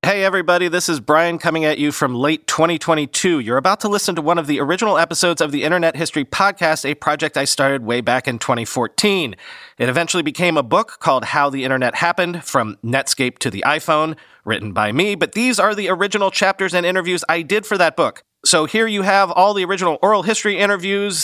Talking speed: 210 wpm